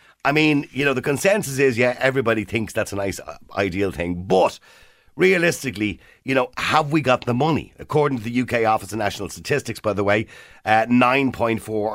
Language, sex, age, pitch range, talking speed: English, male, 50-69, 95-140 Hz, 190 wpm